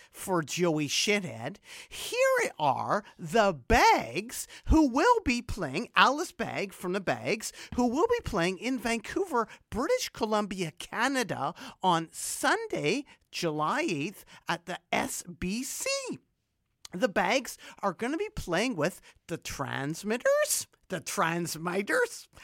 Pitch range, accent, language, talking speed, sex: 155-255 Hz, American, English, 120 wpm, male